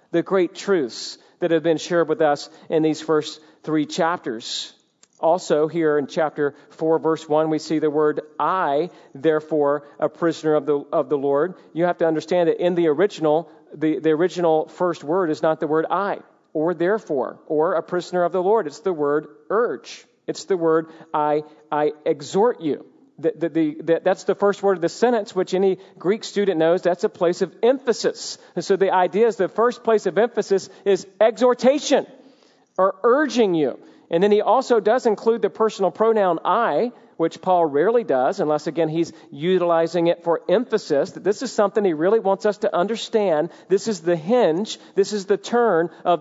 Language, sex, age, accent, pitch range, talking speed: English, male, 40-59, American, 160-205 Hz, 185 wpm